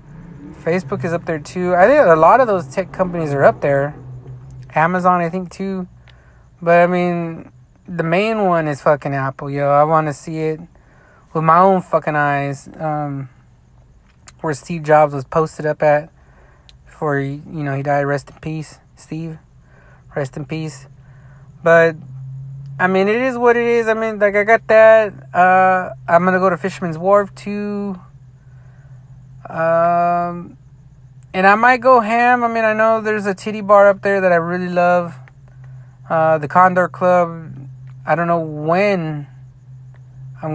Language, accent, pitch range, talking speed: English, American, 135-175 Hz, 165 wpm